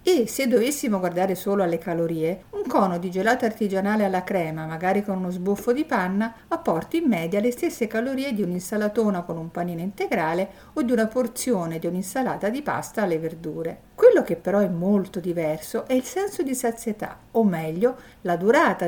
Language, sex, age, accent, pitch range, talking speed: Italian, female, 50-69, native, 170-240 Hz, 180 wpm